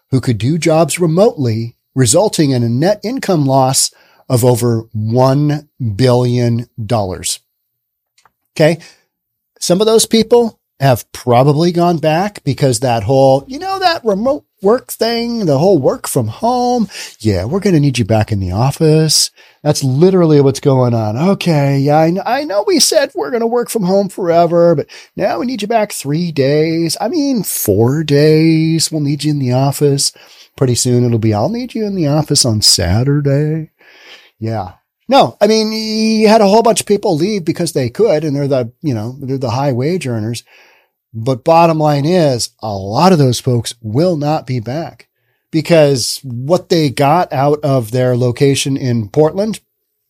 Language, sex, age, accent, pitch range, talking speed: English, male, 40-59, American, 125-185 Hz, 170 wpm